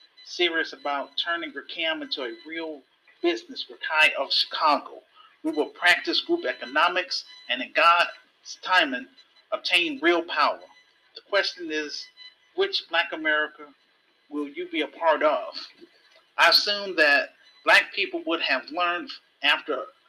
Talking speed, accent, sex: 135 wpm, American, male